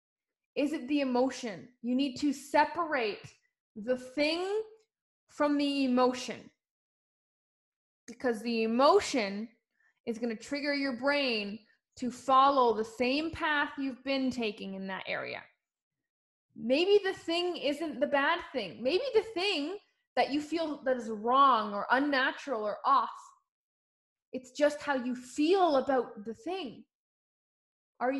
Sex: female